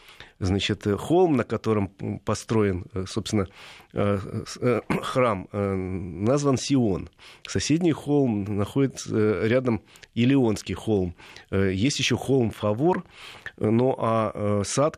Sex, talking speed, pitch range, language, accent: male, 90 wpm, 100-125 Hz, Russian, native